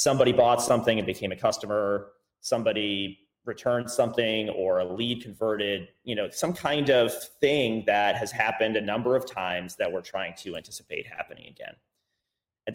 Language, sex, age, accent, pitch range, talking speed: English, male, 30-49, American, 110-140 Hz, 165 wpm